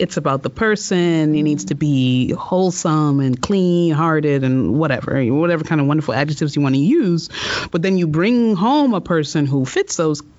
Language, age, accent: English, 30-49, American